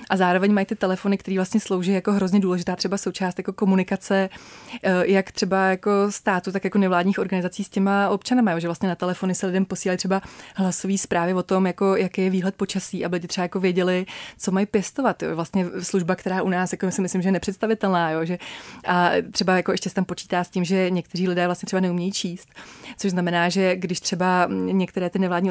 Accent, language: native, Czech